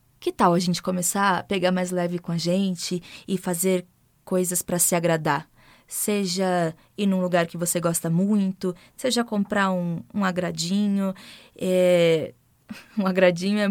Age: 20-39